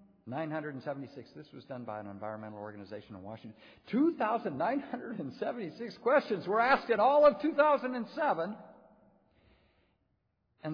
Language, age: English, 60-79